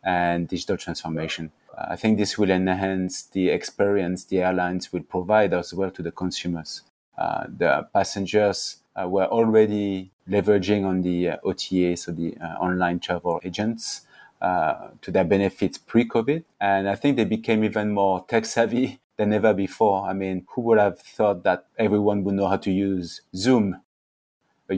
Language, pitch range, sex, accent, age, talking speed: English, 90-105 Hz, male, French, 30-49, 165 wpm